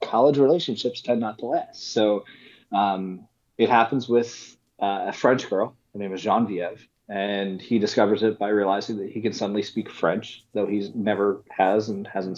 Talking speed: 185 wpm